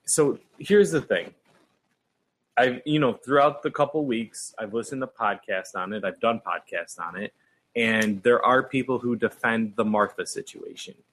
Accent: American